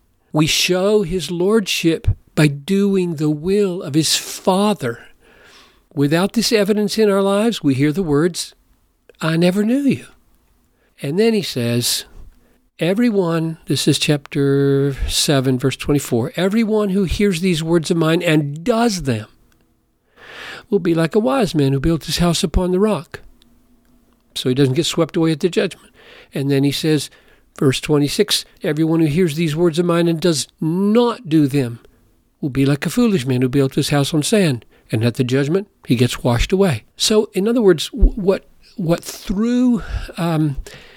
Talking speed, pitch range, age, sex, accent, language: 165 wpm, 140-190 Hz, 50-69, male, American, English